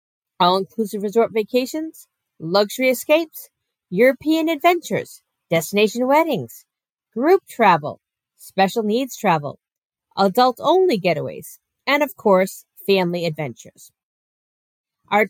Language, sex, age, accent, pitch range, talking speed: English, female, 50-69, American, 195-270 Hz, 85 wpm